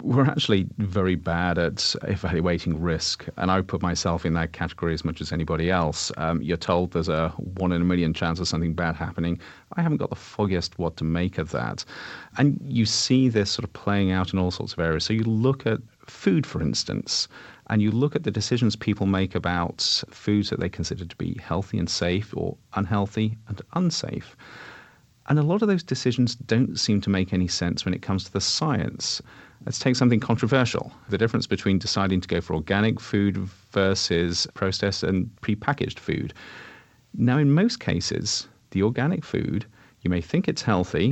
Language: English